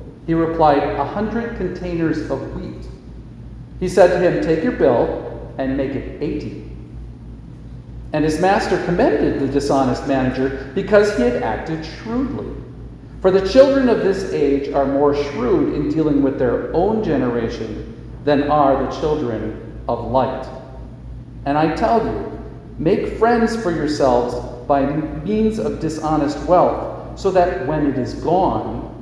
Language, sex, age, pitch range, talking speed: English, male, 50-69, 130-175 Hz, 145 wpm